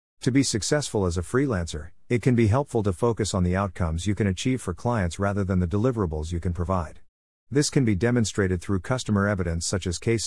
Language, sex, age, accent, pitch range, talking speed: English, male, 50-69, American, 90-115 Hz, 215 wpm